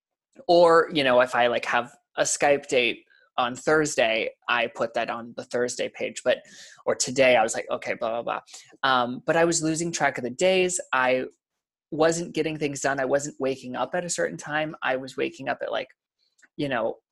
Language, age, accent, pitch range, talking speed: English, 20-39, American, 125-155 Hz, 205 wpm